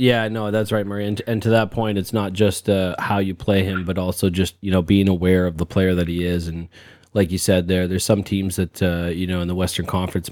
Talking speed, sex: 275 wpm, male